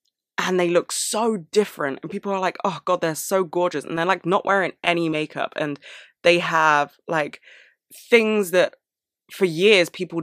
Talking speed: 175 wpm